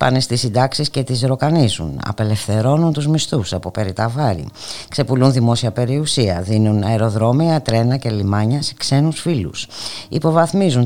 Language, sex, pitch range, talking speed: Greek, female, 105-150 Hz, 125 wpm